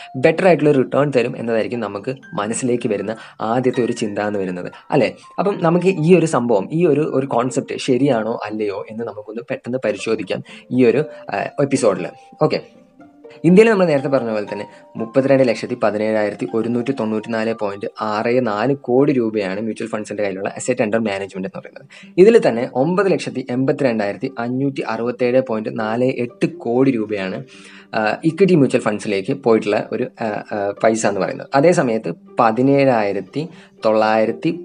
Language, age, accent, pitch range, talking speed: Malayalam, 20-39, native, 110-145 Hz, 130 wpm